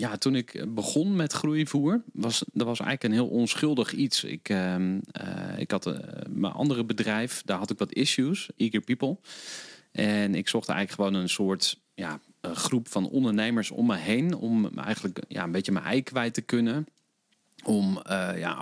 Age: 40-59